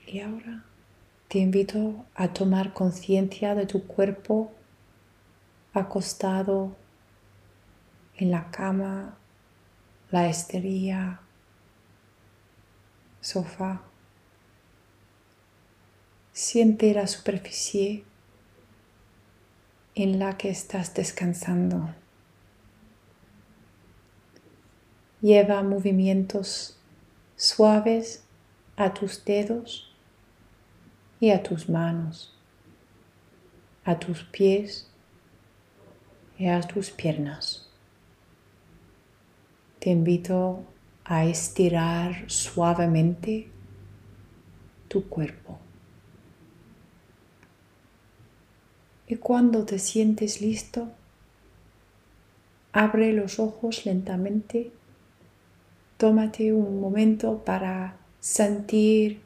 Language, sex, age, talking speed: English, female, 30-49, 65 wpm